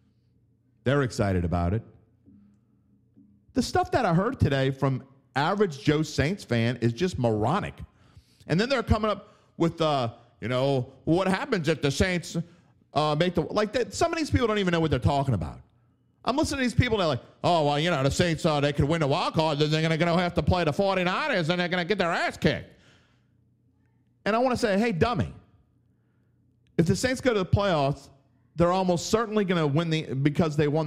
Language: English